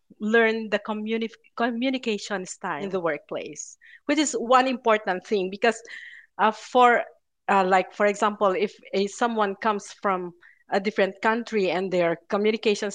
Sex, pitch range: female, 185-225 Hz